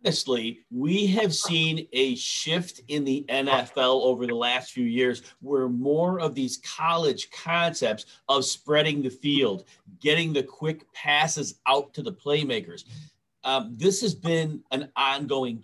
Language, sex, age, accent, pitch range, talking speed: English, male, 40-59, American, 135-170 Hz, 145 wpm